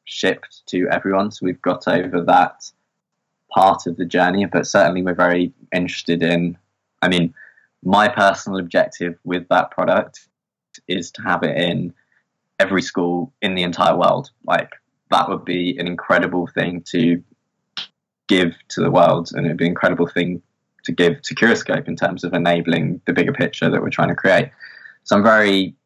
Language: English